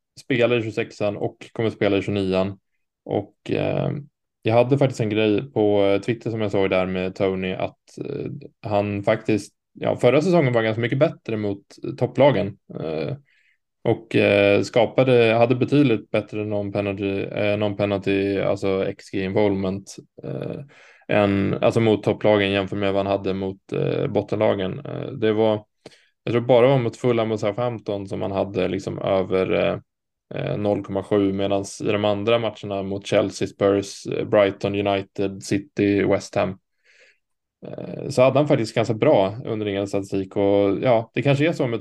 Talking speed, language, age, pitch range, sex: 160 wpm, Swedish, 20-39, 100-115 Hz, male